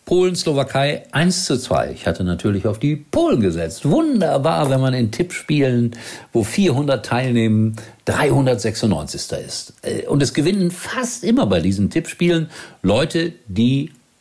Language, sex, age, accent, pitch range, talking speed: German, male, 60-79, German, 100-155 Hz, 140 wpm